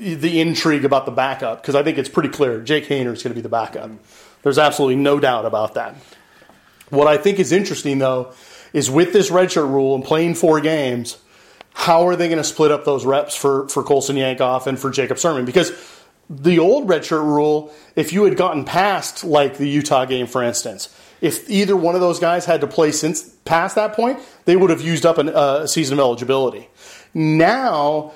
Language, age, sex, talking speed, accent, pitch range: English, 30-49, male, 205 wpm, American, 140-170 Hz